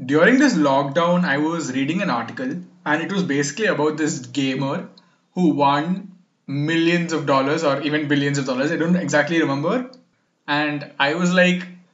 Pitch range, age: 135-170 Hz, 20-39